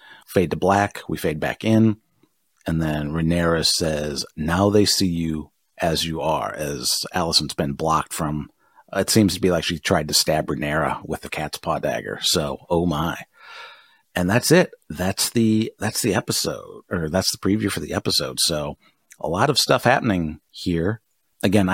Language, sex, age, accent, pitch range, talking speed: English, male, 40-59, American, 85-110 Hz, 175 wpm